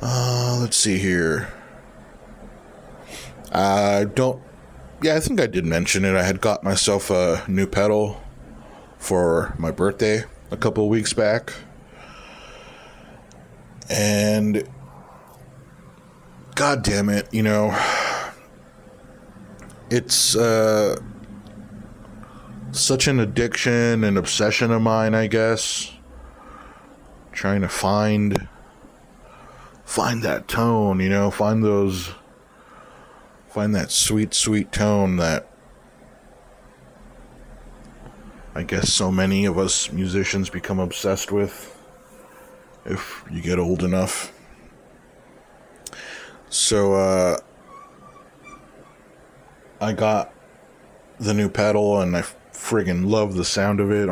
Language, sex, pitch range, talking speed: English, male, 95-110 Hz, 100 wpm